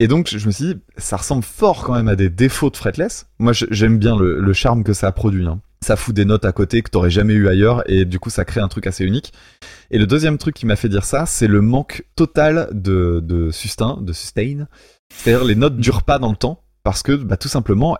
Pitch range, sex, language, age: 100-130 Hz, male, French, 20-39